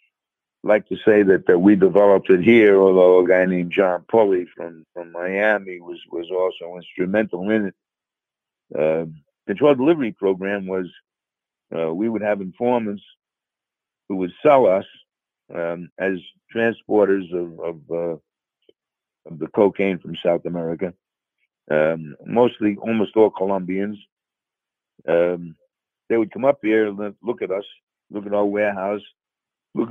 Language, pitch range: English, 90-105 Hz